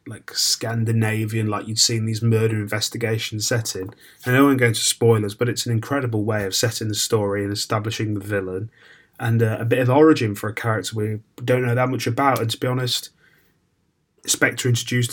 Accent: British